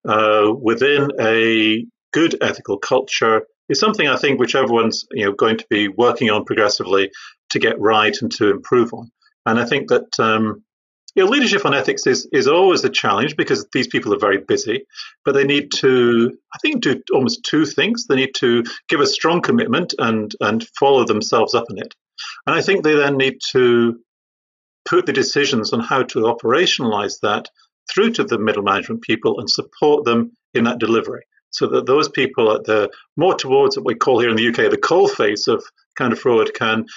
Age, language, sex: 40-59, English, male